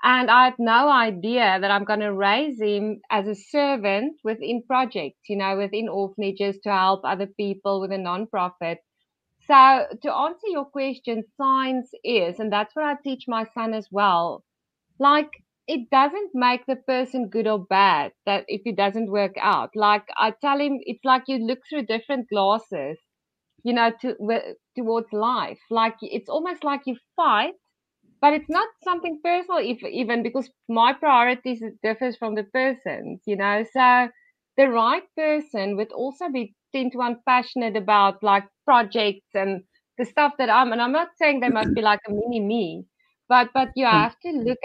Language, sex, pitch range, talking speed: English, female, 210-265 Hz, 175 wpm